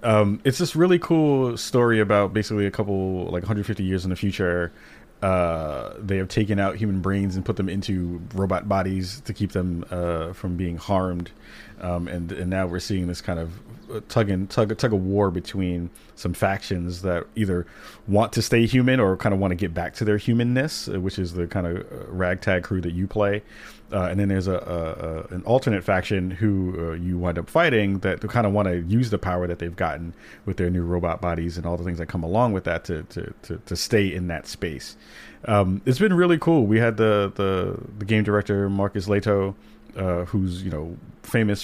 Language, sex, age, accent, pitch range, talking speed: English, male, 30-49, American, 90-105 Hz, 210 wpm